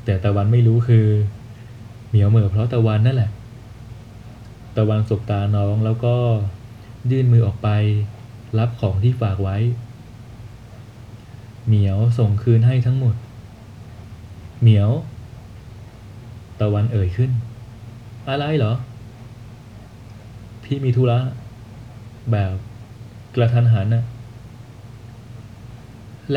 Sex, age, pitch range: male, 20-39, 110-120 Hz